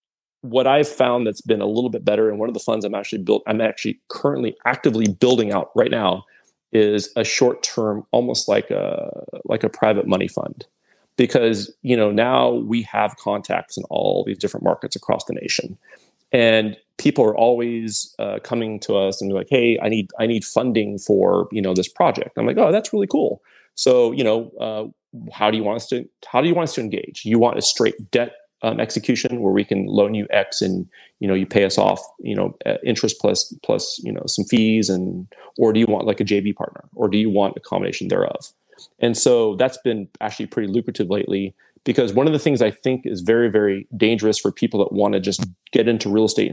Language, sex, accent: English, male, American